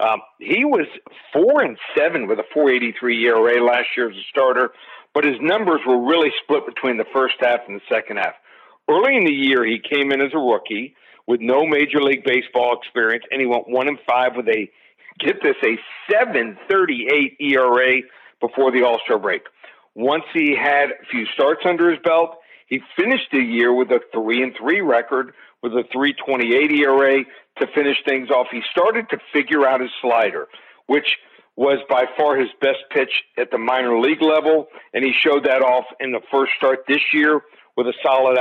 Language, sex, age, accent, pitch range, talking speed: English, male, 50-69, American, 120-145 Hz, 200 wpm